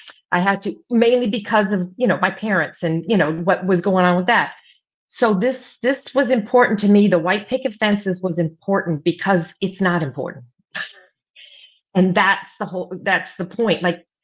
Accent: American